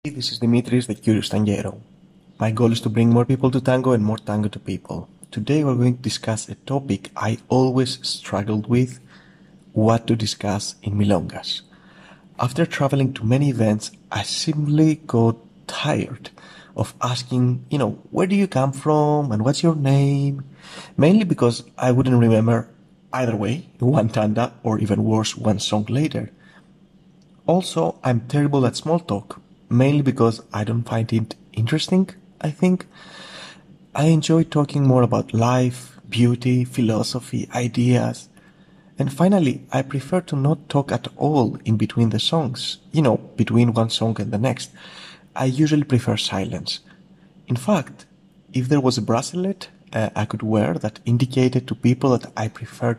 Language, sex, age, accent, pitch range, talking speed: English, male, 30-49, Spanish, 115-155 Hz, 160 wpm